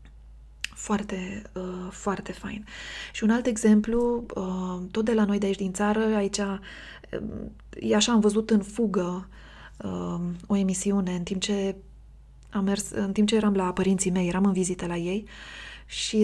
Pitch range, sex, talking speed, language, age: 185-215 Hz, female, 170 wpm, Romanian, 20-39